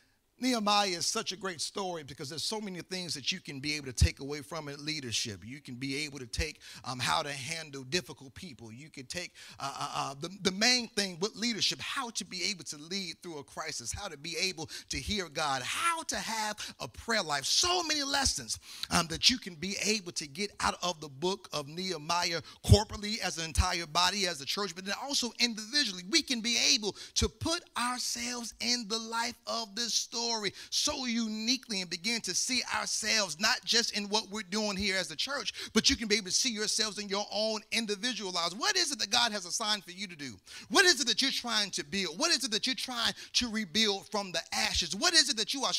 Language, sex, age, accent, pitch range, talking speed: English, male, 40-59, American, 180-235 Hz, 230 wpm